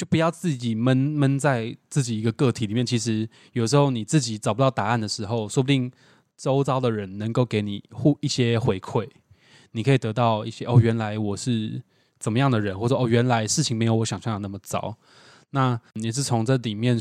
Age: 20-39